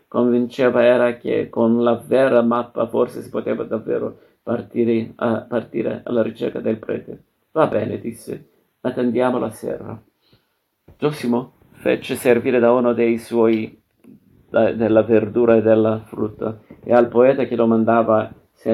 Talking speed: 140 wpm